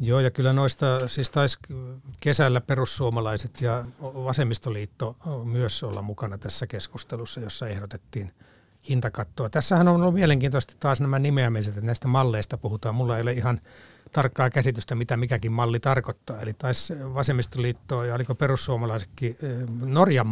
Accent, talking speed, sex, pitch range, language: native, 135 wpm, male, 120-155 Hz, Finnish